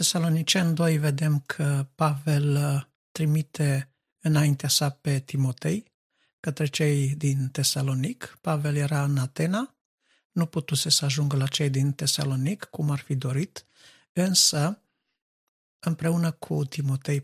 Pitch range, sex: 140-160 Hz, male